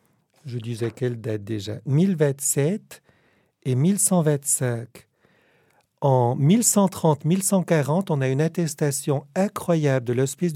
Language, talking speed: French, 95 wpm